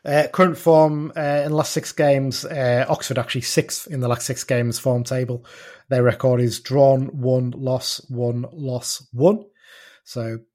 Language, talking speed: English, 170 wpm